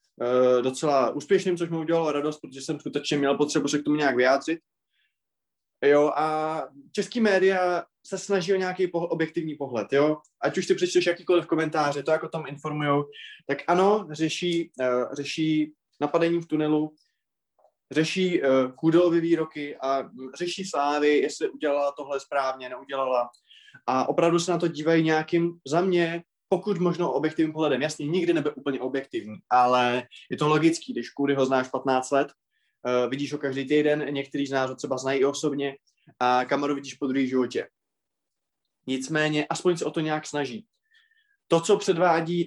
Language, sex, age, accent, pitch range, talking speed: Czech, male, 20-39, native, 140-175 Hz, 155 wpm